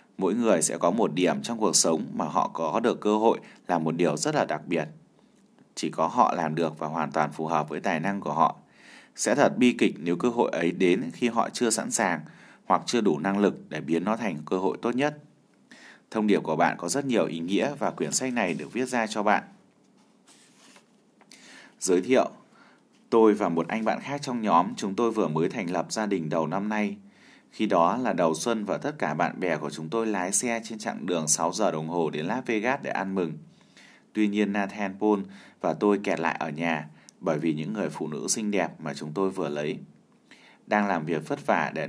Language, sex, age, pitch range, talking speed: Vietnamese, male, 20-39, 80-110 Hz, 230 wpm